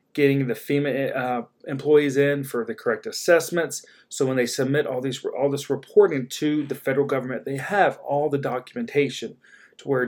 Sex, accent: male, American